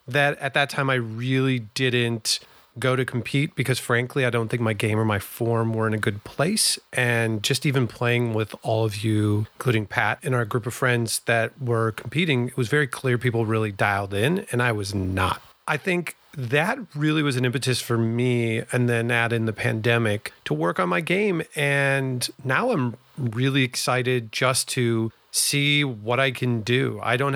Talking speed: 195 wpm